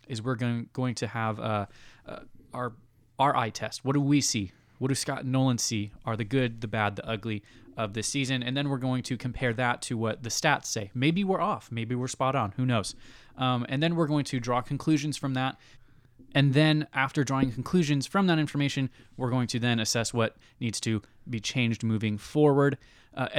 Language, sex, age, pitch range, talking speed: English, male, 20-39, 110-135 Hz, 215 wpm